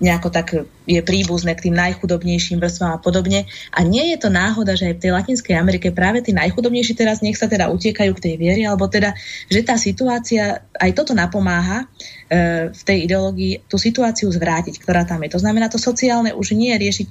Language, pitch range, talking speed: Slovak, 170-205 Hz, 200 wpm